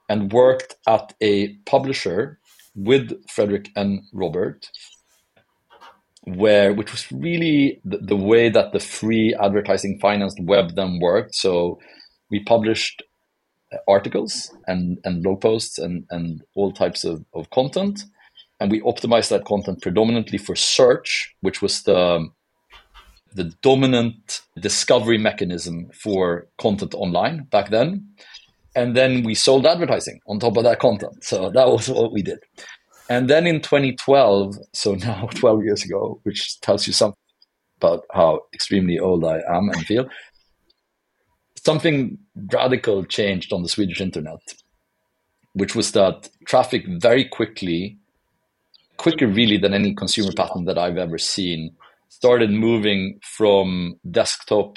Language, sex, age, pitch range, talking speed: English, male, 40-59, 95-120 Hz, 135 wpm